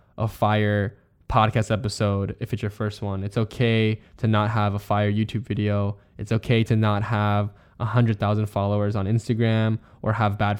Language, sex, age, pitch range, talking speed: English, male, 10-29, 105-120 Hz, 180 wpm